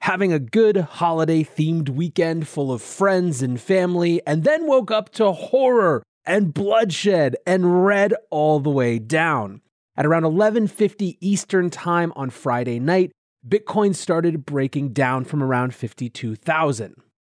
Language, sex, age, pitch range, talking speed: English, male, 30-49, 140-185 Hz, 135 wpm